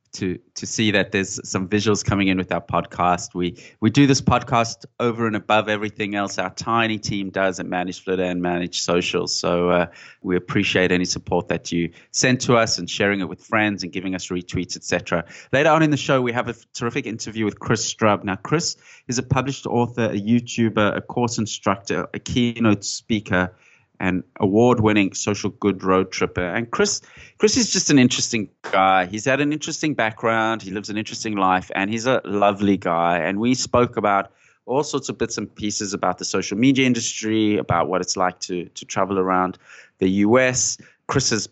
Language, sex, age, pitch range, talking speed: English, male, 30-49, 95-120 Hz, 195 wpm